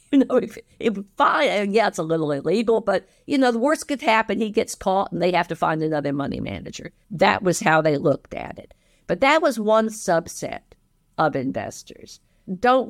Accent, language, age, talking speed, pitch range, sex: American, English, 50-69, 200 wpm, 150-215 Hz, female